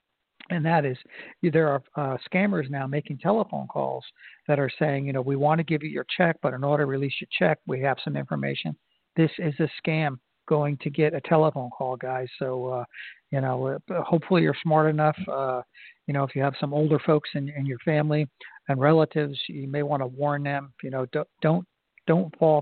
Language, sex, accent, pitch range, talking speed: English, male, American, 135-160 Hz, 210 wpm